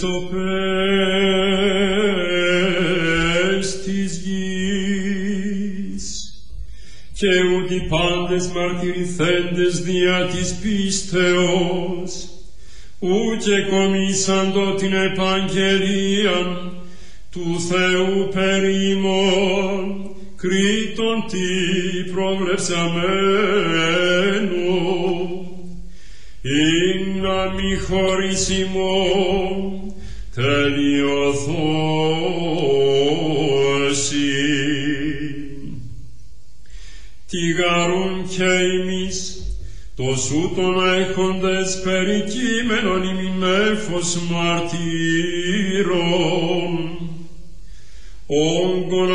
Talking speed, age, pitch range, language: 45 wpm, 40-59, 170-190 Hz, Greek